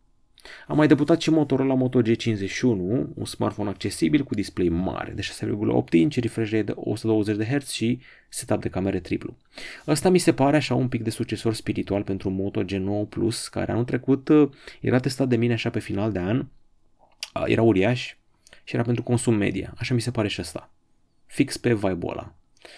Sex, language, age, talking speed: male, Romanian, 30-49, 175 wpm